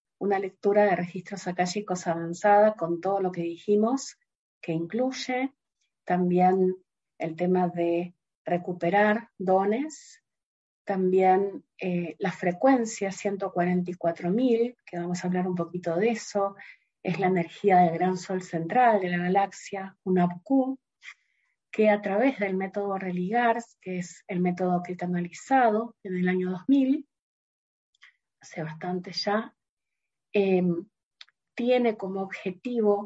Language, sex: Spanish, female